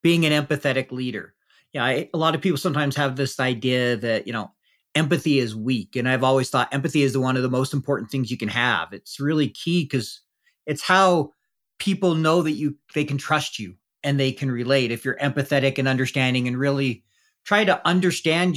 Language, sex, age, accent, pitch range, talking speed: English, male, 40-59, American, 130-165 Hz, 205 wpm